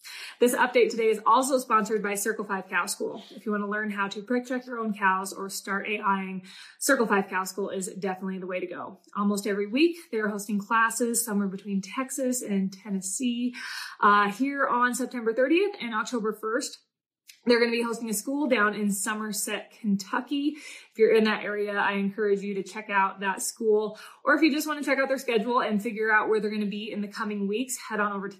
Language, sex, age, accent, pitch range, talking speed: English, female, 20-39, American, 205-250 Hz, 220 wpm